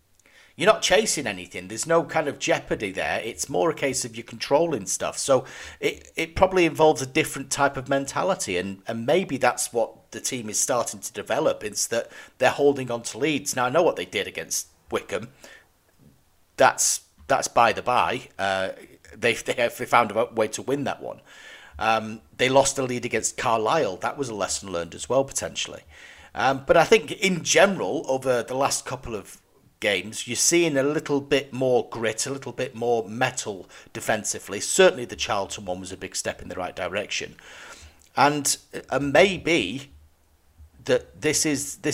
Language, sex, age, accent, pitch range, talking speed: English, male, 40-59, British, 110-145 Hz, 185 wpm